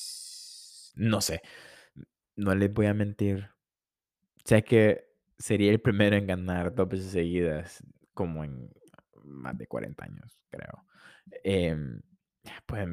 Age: 20-39